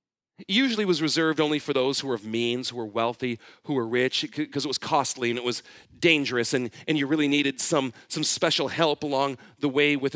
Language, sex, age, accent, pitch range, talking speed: English, male, 40-59, American, 125-150 Hz, 225 wpm